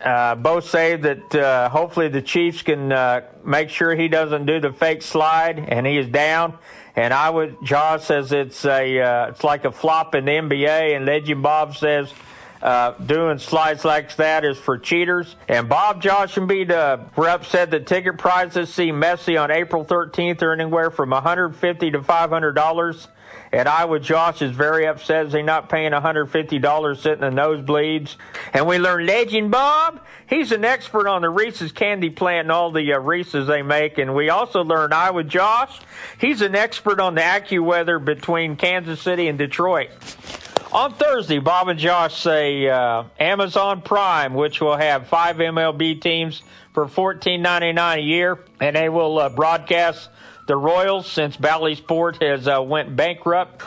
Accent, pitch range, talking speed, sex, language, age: American, 150-175 Hz, 175 wpm, male, English, 50-69